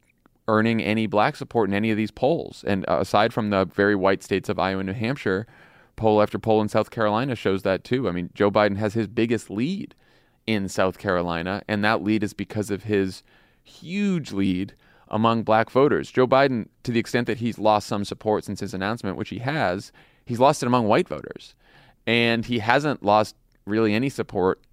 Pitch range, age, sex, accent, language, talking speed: 95-115 Hz, 30-49, male, American, English, 200 wpm